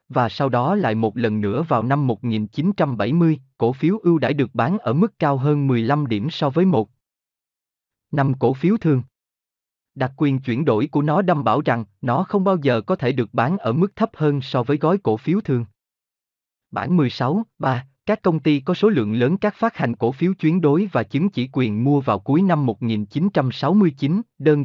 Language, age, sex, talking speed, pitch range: Vietnamese, 20-39, male, 200 wpm, 115-170 Hz